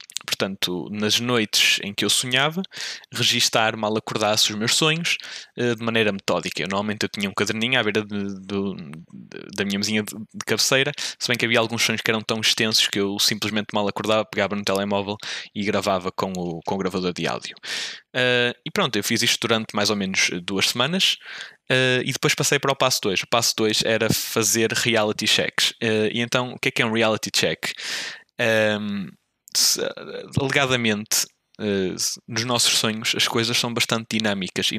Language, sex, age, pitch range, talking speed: Portuguese, male, 20-39, 105-120 Hz, 170 wpm